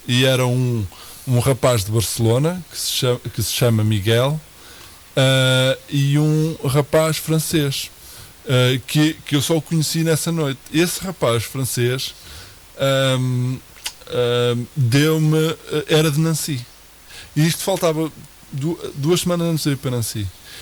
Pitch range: 115-150 Hz